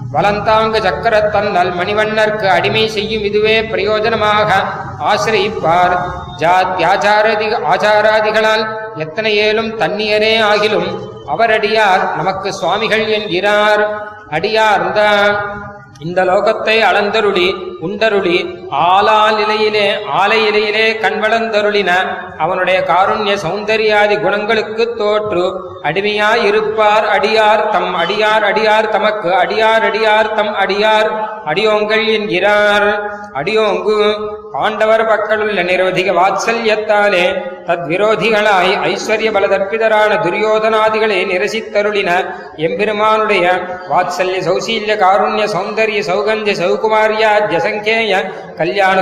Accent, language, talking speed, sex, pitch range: native, Tamil, 70 wpm, male, 195-215 Hz